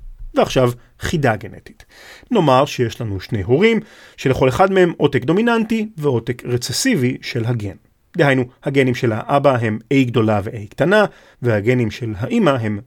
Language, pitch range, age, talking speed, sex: Hebrew, 115-180 Hz, 40-59, 140 wpm, male